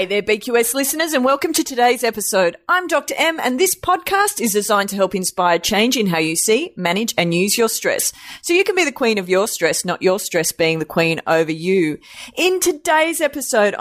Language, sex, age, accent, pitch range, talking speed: English, female, 30-49, Australian, 160-230 Hz, 215 wpm